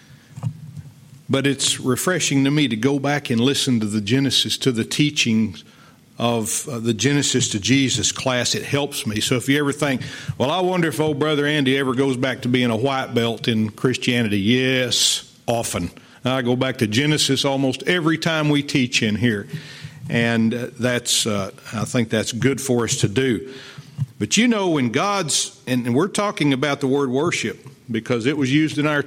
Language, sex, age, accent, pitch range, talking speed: English, male, 50-69, American, 120-150 Hz, 185 wpm